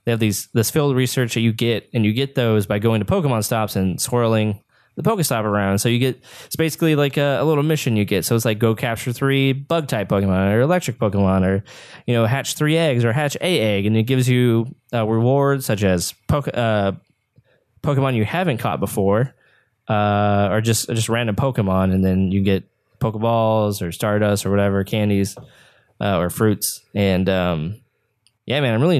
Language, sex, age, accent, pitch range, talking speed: English, male, 20-39, American, 105-130 Hz, 195 wpm